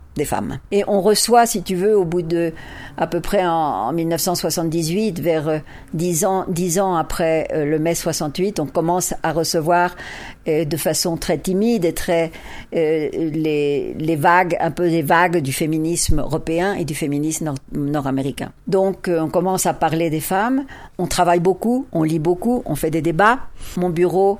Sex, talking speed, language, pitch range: female, 180 wpm, French, 160-195 Hz